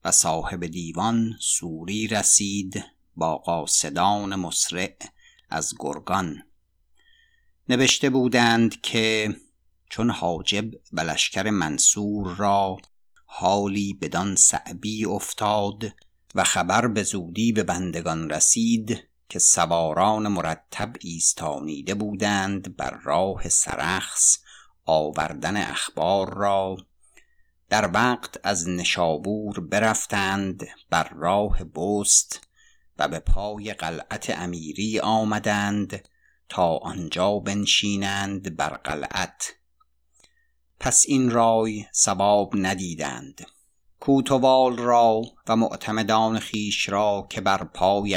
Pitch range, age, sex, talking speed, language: 95-110 Hz, 50-69, male, 90 wpm, Persian